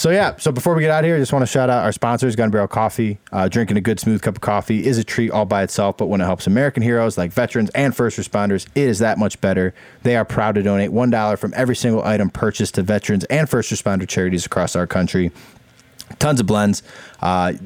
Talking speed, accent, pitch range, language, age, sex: 250 wpm, American, 95-115 Hz, English, 20-39, male